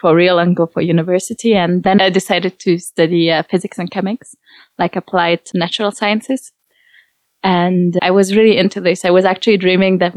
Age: 20-39